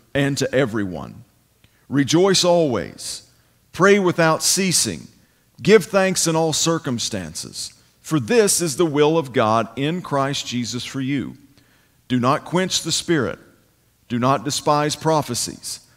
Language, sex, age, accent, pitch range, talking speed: English, male, 40-59, American, 105-140 Hz, 130 wpm